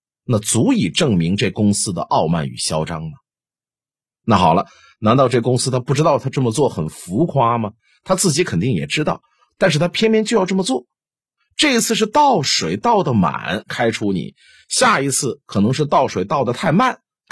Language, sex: Chinese, male